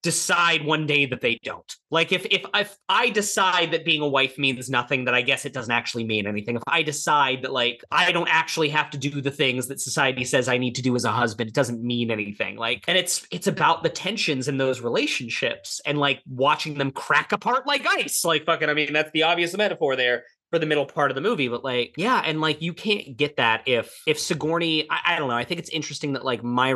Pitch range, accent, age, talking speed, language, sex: 120-155 Hz, American, 30-49, 245 wpm, English, male